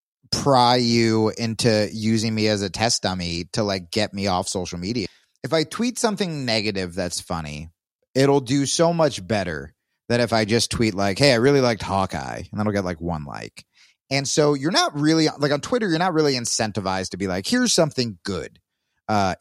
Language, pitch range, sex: English, 95-140 Hz, male